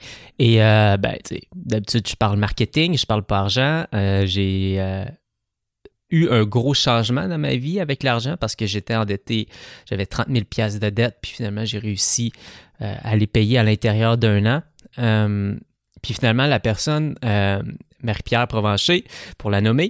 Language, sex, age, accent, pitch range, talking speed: English, male, 20-39, Canadian, 105-130 Hz, 170 wpm